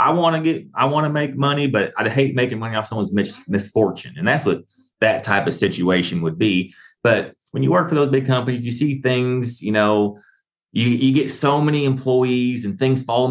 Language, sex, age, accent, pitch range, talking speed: English, male, 30-49, American, 100-135 Hz, 215 wpm